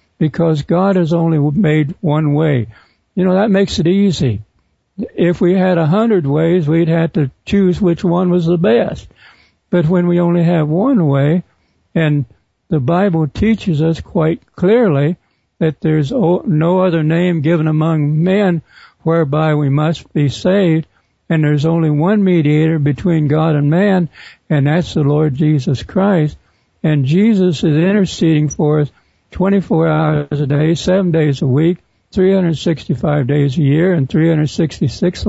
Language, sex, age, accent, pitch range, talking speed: English, male, 60-79, American, 140-175 Hz, 155 wpm